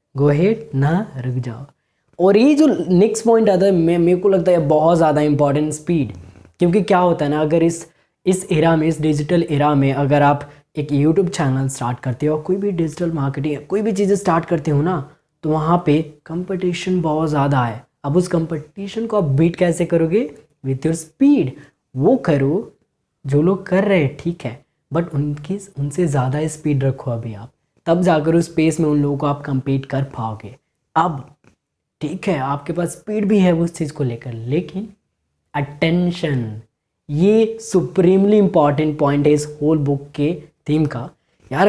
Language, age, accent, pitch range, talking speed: Hindi, 20-39, native, 145-190 Hz, 180 wpm